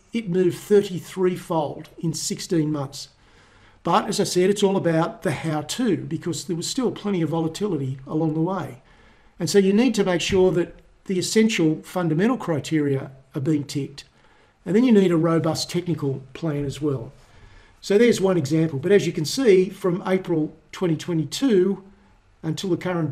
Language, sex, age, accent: English, male, 50-69, Australian